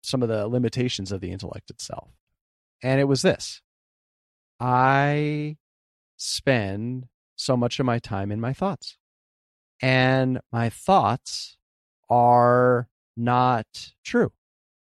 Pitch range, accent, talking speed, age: 95-125 Hz, American, 115 wpm, 30-49